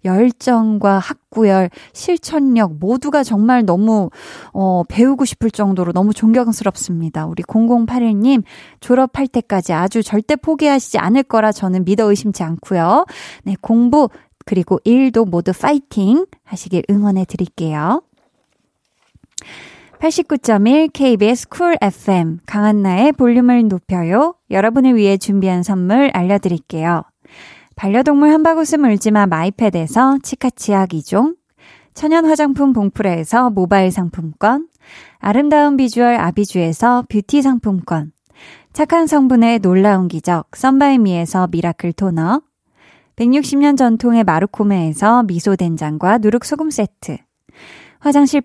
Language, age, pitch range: Korean, 20-39, 190-270 Hz